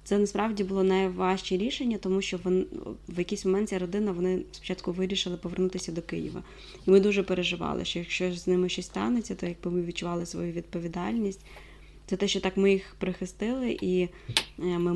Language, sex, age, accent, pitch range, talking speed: Ukrainian, female, 20-39, native, 180-205 Hz, 175 wpm